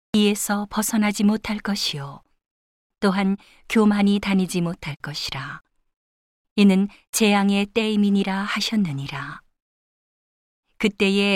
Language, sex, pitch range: Korean, female, 175-205 Hz